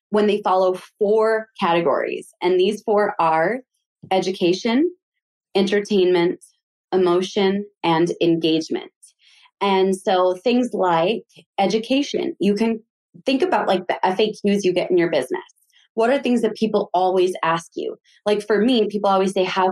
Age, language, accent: 20-39, English, American